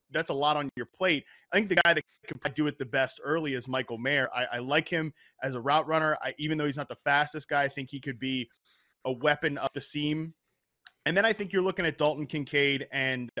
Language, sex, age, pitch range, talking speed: English, male, 20-39, 130-155 Hz, 250 wpm